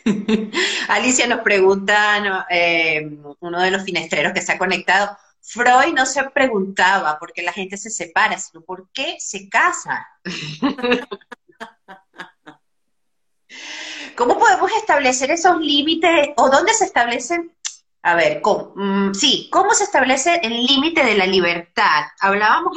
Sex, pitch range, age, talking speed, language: female, 195-275 Hz, 30-49, 125 wpm, Spanish